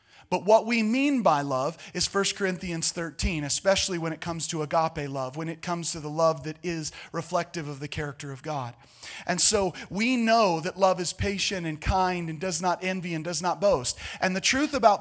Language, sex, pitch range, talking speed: English, male, 160-220 Hz, 210 wpm